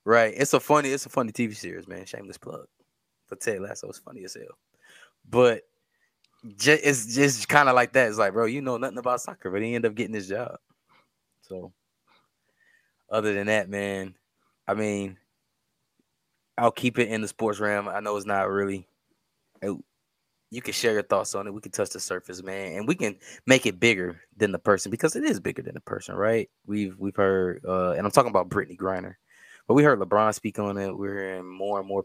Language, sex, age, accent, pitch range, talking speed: English, male, 20-39, American, 95-115 Hz, 215 wpm